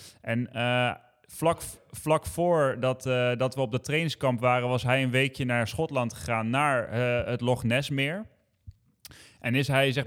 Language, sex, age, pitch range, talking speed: Dutch, male, 20-39, 120-140 Hz, 175 wpm